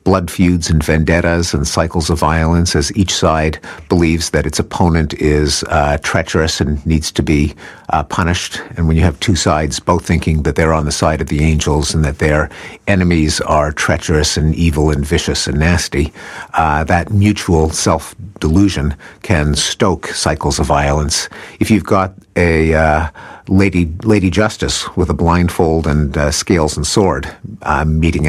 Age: 50-69